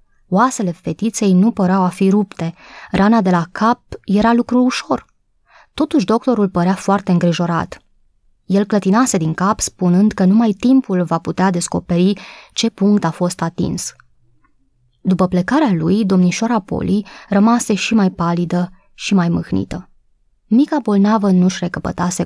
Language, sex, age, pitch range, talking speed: Romanian, female, 20-39, 175-215 Hz, 140 wpm